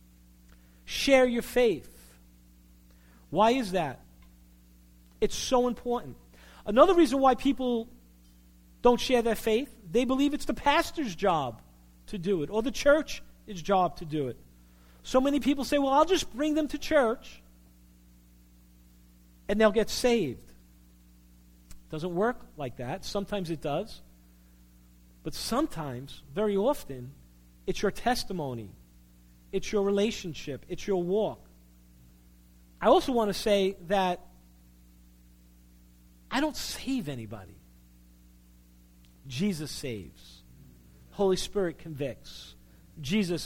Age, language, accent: 40-59, English, American